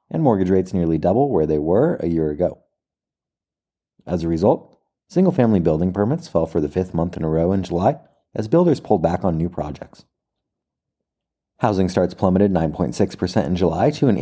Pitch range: 85-115 Hz